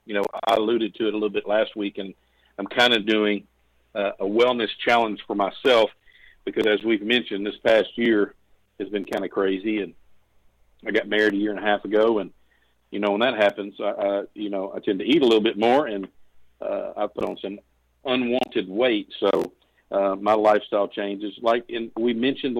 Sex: male